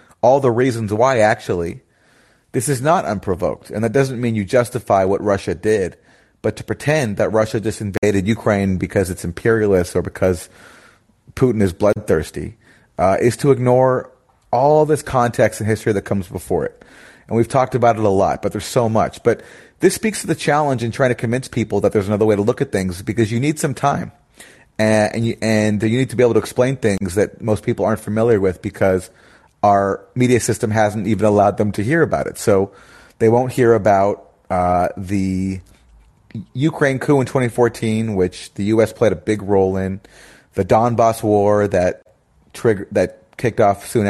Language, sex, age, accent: English, male, 30-49, American